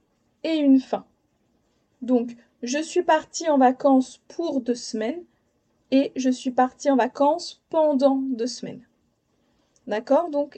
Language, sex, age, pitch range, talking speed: French, female, 20-39, 250-310 Hz, 130 wpm